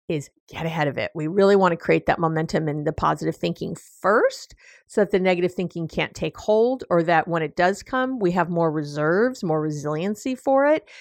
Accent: American